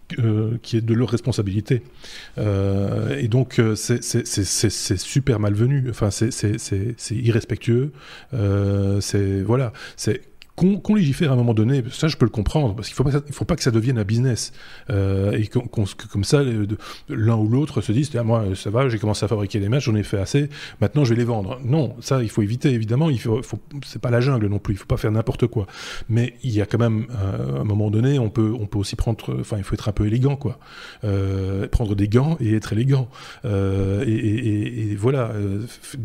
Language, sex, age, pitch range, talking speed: French, male, 20-39, 105-130 Hz, 235 wpm